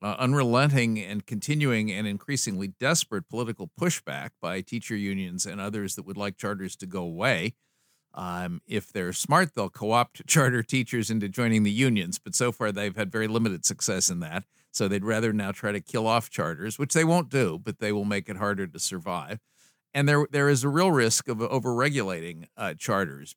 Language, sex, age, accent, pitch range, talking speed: English, male, 50-69, American, 105-130 Hz, 195 wpm